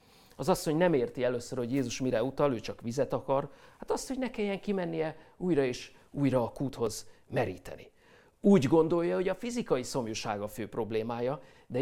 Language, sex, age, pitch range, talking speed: Hungarian, male, 50-69, 110-140 Hz, 185 wpm